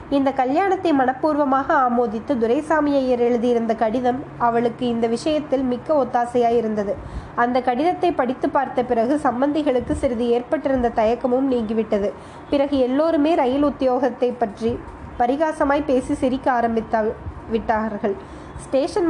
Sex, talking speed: female, 100 wpm